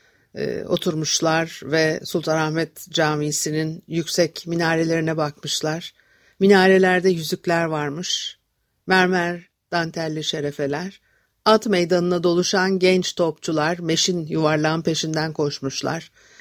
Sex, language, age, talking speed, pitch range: female, Turkish, 60-79, 80 wpm, 155-185 Hz